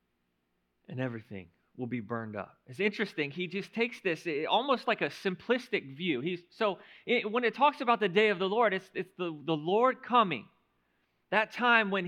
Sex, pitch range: male, 155-215 Hz